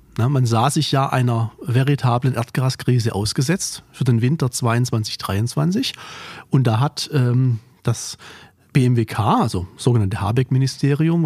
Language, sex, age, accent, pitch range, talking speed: German, male, 40-59, German, 115-145 Hz, 115 wpm